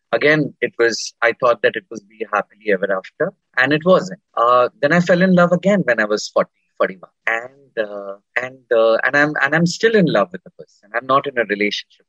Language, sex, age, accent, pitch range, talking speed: Hindi, male, 30-49, native, 130-180 Hz, 225 wpm